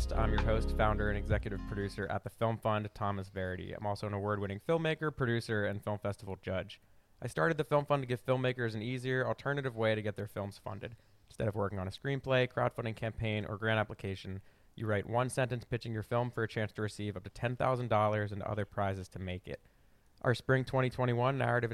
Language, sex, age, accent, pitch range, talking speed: English, male, 20-39, American, 105-125 Hz, 215 wpm